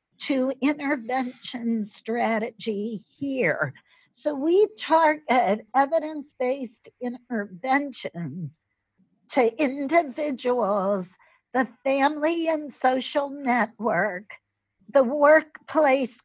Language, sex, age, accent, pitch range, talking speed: English, female, 50-69, American, 230-290 Hz, 65 wpm